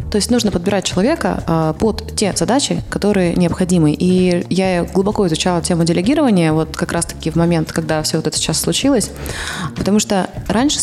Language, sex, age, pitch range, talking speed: Russian, female, 20-39, 160-200 Hz, 170 wpm